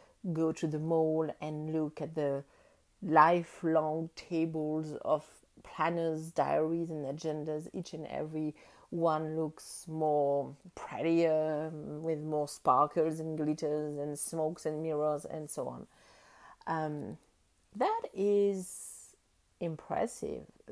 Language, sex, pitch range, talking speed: English, female, 155-205 Hz, 110 wpm